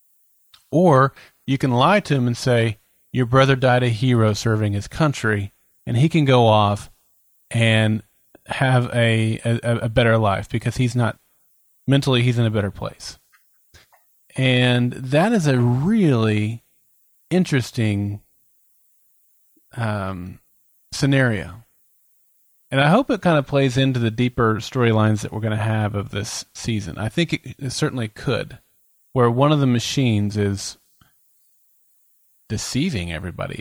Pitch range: 110-145 Hz